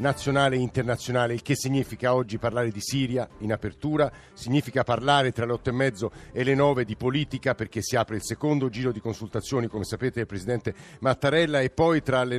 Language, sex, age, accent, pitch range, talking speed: Italian, male, 50-69, native, 120-140 Hz, 200 wpm